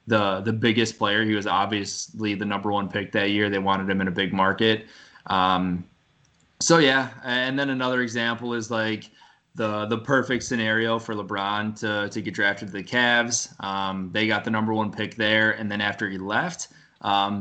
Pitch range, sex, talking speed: 100-115 Hz, male, 195 wpm